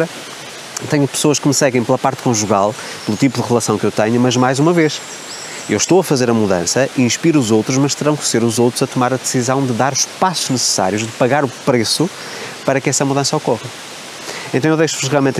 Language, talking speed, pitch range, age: Portuguese, 220 wpm, 120-145 Hz, 20-39